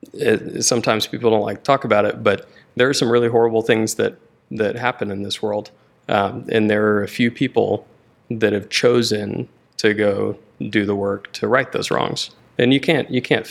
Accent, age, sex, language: American, 20-39, male, English